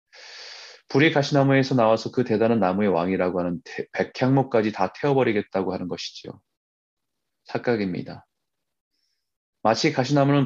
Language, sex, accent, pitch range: Korean, male, native, 95-130 Hz